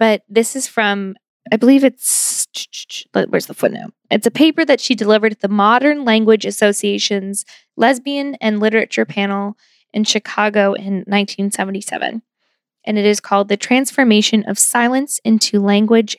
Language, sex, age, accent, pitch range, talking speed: English, female, 10-29, American, 205-235 Hz, 145 wpm